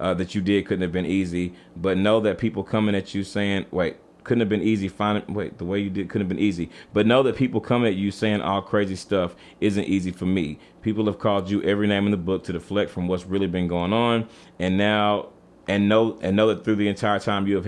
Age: 30-49